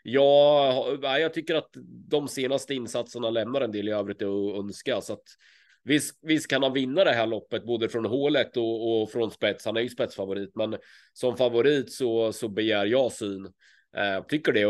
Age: 30-49